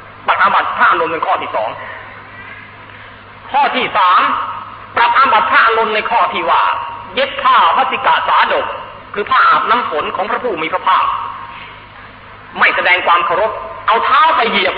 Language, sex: Thai, male